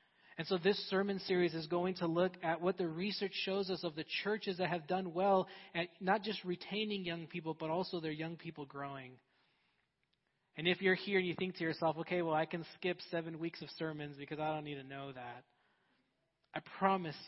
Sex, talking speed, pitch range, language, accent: male, 210 wpm, 155-185 Hz, English, American